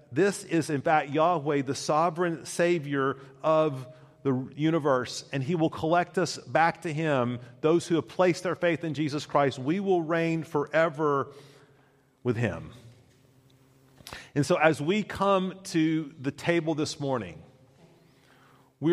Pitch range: 125-155 Hz